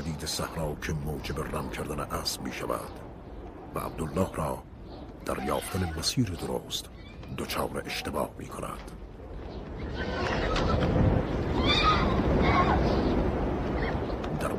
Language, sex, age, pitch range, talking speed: Persian, male, 60-79, 75-100 Hz, 80 wpm